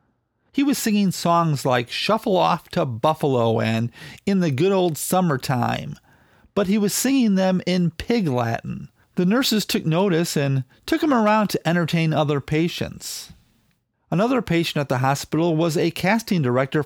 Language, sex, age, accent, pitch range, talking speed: English, male, 40-59, American, 135-195 Hz, 155 wpm